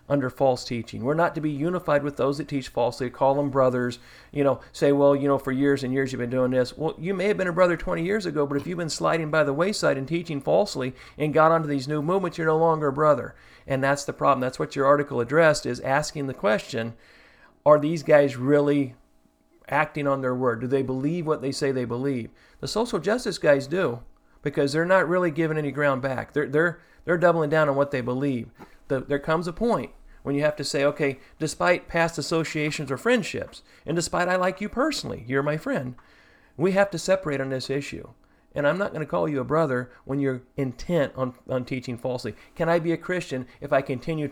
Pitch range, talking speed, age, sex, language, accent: 135-165 Hz, 230 wpm, 40-59, male, English, American